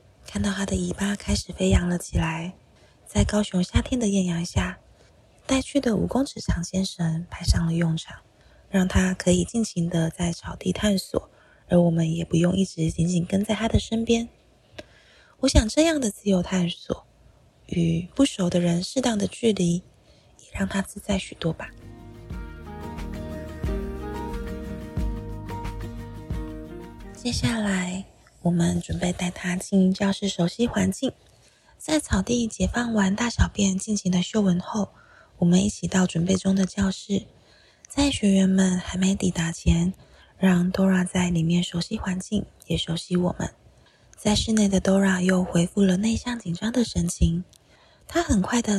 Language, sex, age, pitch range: Chinese, female, 20-39, 170-205 Hz